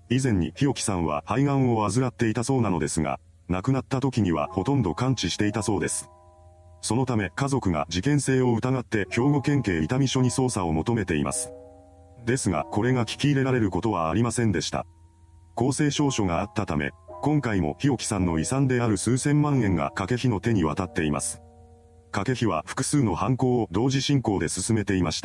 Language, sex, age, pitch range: Japanese, male, 40-59, 90-130 Hz